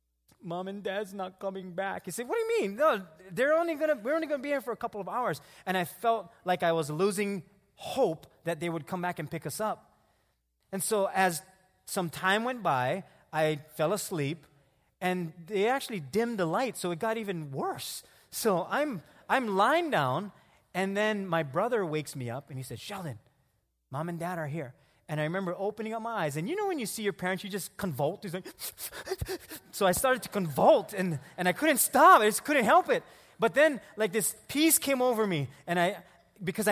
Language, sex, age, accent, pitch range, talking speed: English, male, 30-49, American, 155-215 Hz, 210 wpm